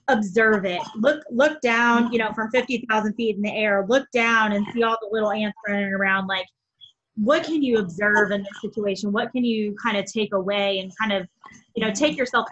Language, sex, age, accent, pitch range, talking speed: English, female, 20-39, American, 205-245 Hz, 220 wpm